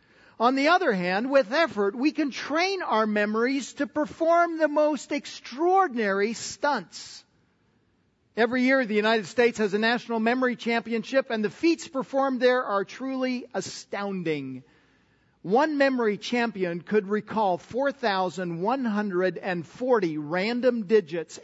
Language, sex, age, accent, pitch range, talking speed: English, male, 50-69, American, 175-250 Hz, 120 wpm